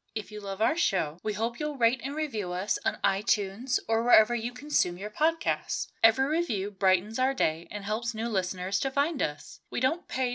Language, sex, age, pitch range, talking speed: English, female, 20-39, 190-270 Hz, 205 wpm